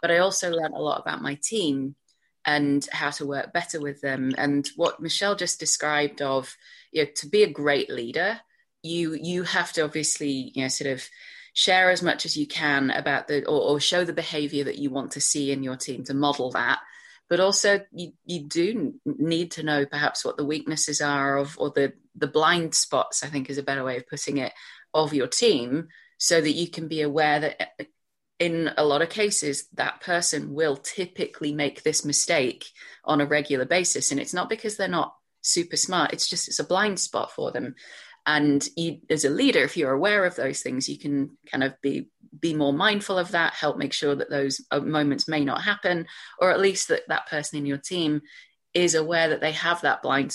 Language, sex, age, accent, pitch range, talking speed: English, female, 30-49, British, 140-175 Hz, 210 wpm